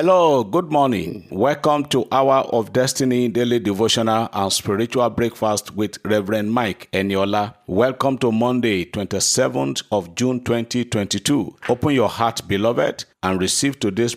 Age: 50-69